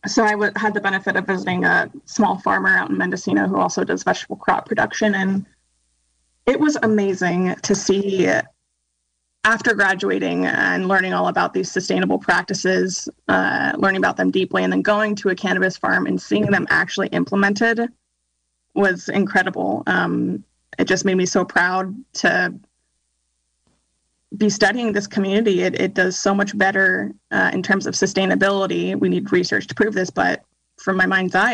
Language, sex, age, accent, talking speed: English, female, 20-39, American, 165 wpm